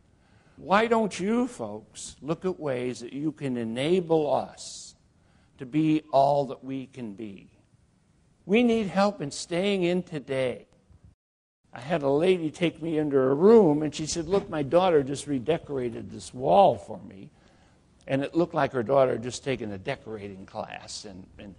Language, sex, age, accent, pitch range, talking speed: English, male, 60-79, American, 125-180 Hz, 170 wpm